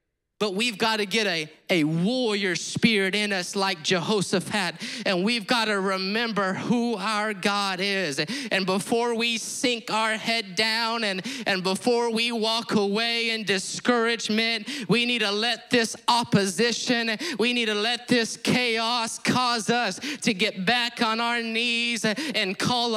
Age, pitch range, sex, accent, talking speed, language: 30-49, 195-235 Hz, male, American, 155 wpm, English